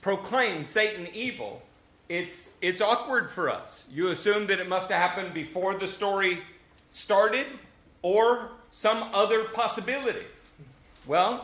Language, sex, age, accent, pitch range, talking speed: English, male, 40-59, American, 210-265 Hz, 125 wpm